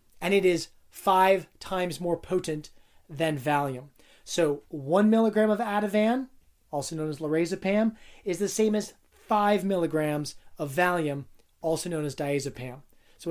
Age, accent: 30-49, American